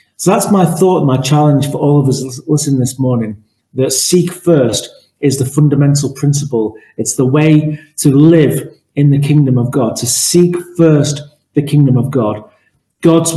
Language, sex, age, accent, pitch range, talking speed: English, male, 40-59, British, 130-155 Hz, 170 wpm